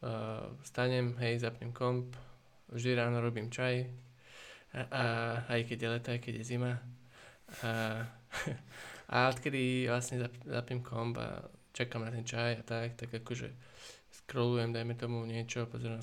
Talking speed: 150 wpm